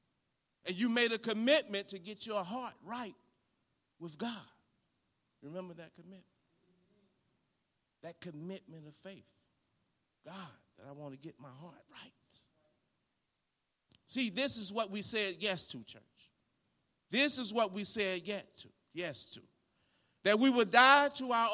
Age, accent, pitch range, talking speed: 40-59, American, 165-250 Hz, 140 wpm